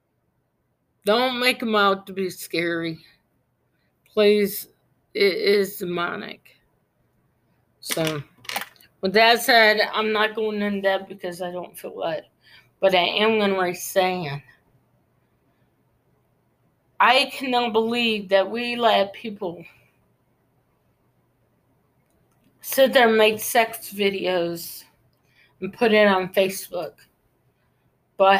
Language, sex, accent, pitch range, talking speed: English, female, American, 190-230 Hz, 105 wpm